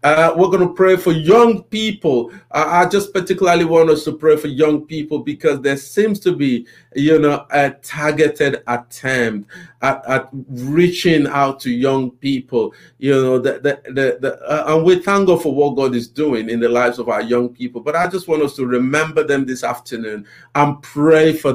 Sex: male